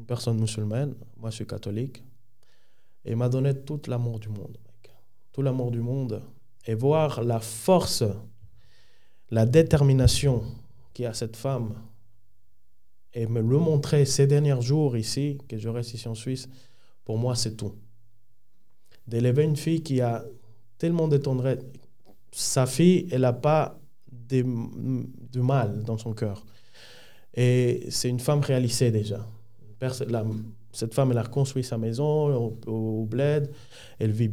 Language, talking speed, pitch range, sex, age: French, 145 wpm, 110-135 Hz, male, 20-39